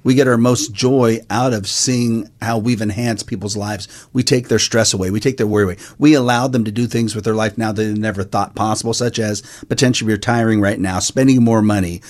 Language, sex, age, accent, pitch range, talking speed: English, male, 40-59, American, 110-135 Hz, 235 wpm